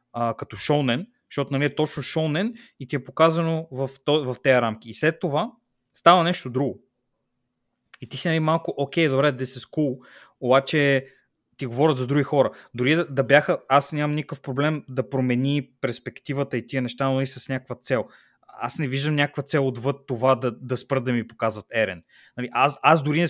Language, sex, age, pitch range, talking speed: Bulgarian, male, 20-39, 125-155 Hz, 200 wpm